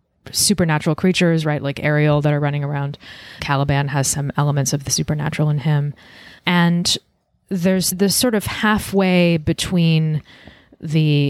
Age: 20-39